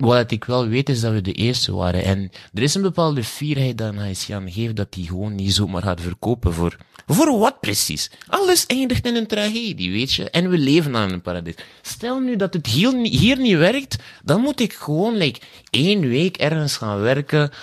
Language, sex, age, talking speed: Dutch, male, 30-49, 210 wpm